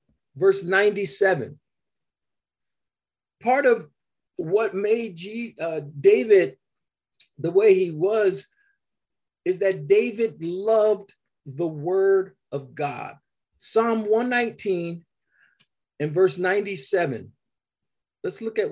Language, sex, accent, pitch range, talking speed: English, male, American, 165-225 Hz, 90 wpm